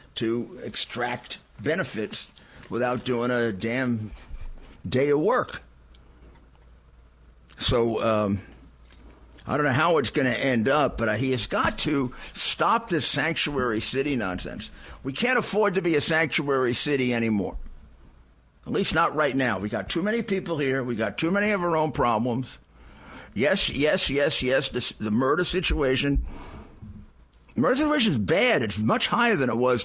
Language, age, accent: English, 50-69, American